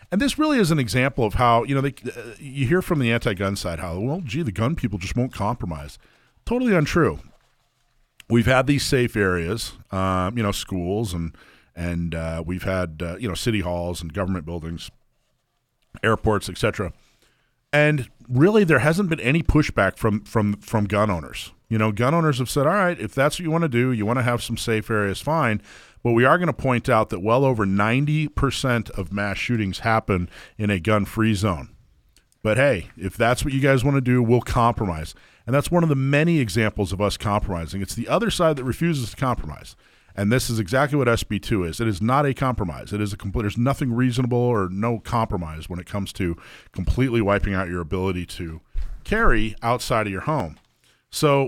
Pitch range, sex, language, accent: 100-135 Hz, male, English, American